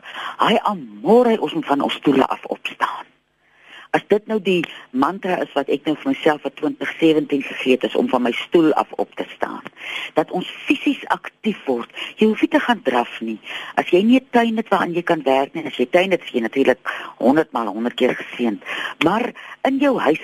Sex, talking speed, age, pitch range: female, 210 wpm, 50-69, 135-200 Hz